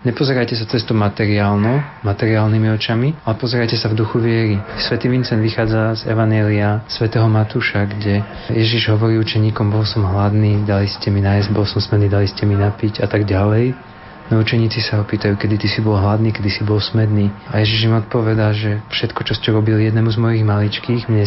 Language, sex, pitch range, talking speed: Slovak, male, 105-115 Hz, 190 wpm